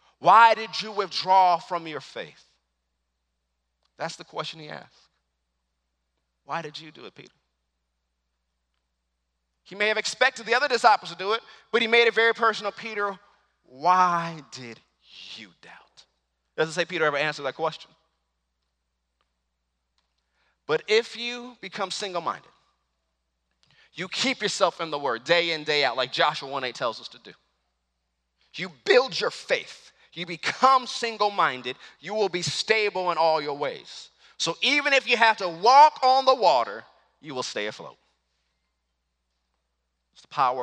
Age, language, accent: 30-49, English, American